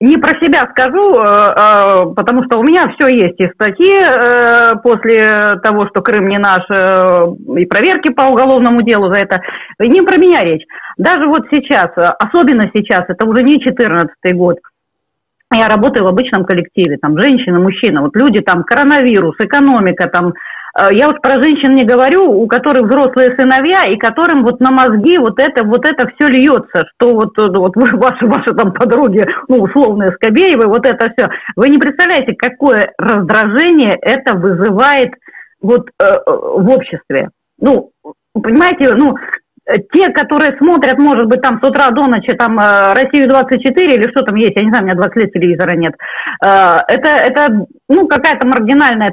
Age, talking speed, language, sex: 30-49, 160 wpm, Russian, female